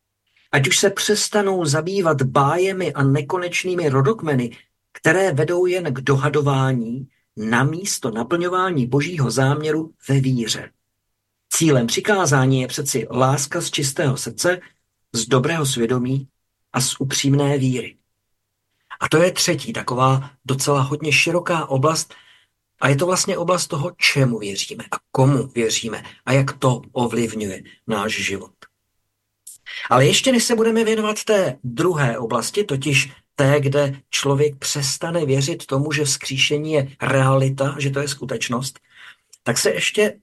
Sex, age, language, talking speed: male, 50-69, Czech, 135 wpm